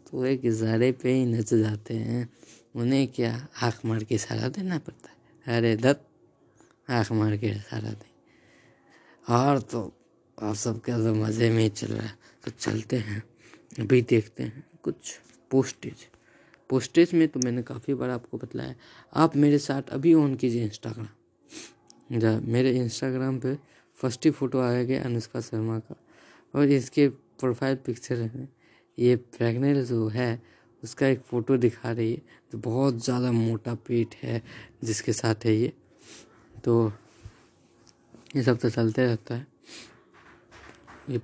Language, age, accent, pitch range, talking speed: Hindi, 20-39, native, 115-130 Hz, 150 wpm